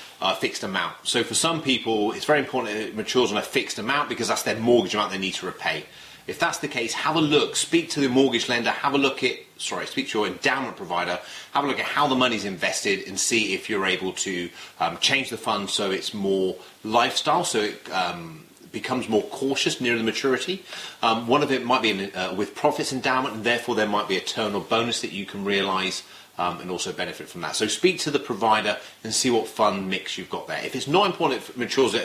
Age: 30-49